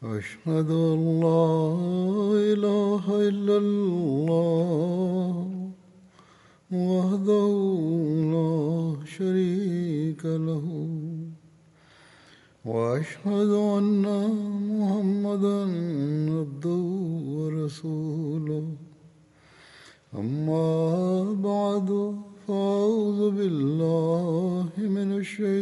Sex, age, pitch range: male, 60-79, 155-200 Hz